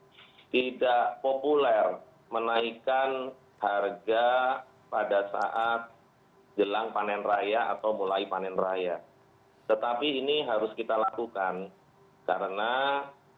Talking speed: 85 wpm